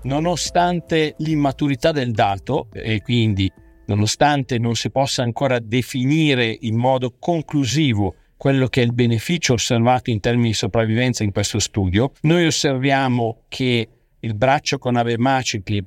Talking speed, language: 130 wpm, Italian